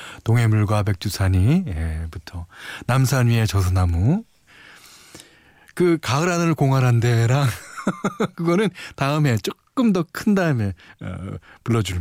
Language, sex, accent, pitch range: Korean, male, native, 100-155 Hz